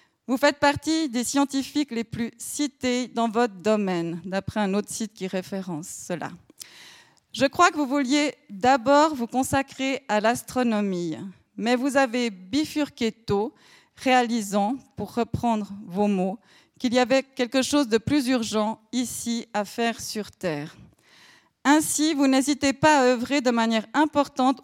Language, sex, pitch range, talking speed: French, female, 215-275 Hz, 145 wpm